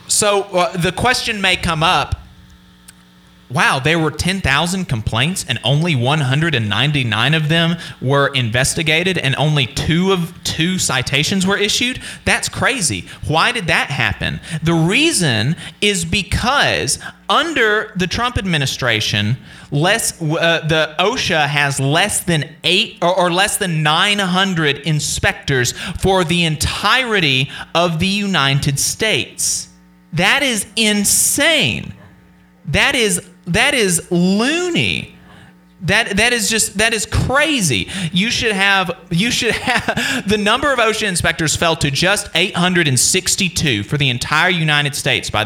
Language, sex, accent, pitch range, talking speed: English, male, American, 150-205 Hz, 130 wpm